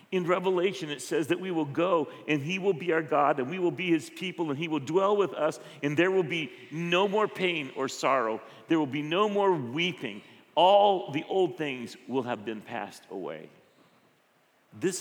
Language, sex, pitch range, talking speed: English, male, 105-165 Hz, 205 wpm